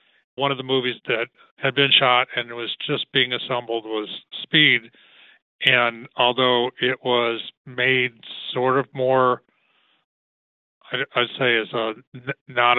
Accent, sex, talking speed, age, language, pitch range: American, male, 130 wpm, 40-59, English, 115-130 Hz